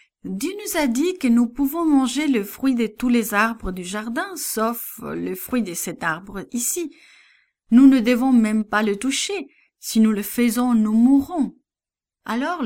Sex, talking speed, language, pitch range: female, 175 wpm, English, 185-270 Hz